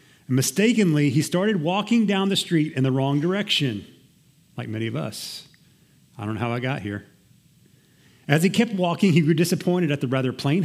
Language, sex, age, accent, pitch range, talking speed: English, male, 30-49, American, 125-160 Hz, 185 wpm